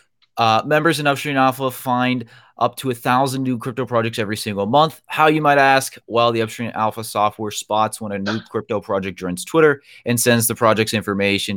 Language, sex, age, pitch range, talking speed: English, male, 30-49, 95-125 Hz, 195 wpm